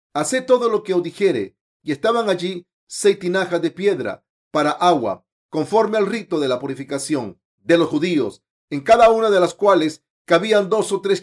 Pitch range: 165-210 Hz